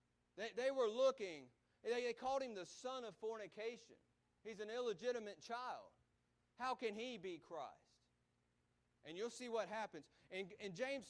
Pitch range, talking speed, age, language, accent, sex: 160-225 Hz, 145 wpm, 40-59, English, American, male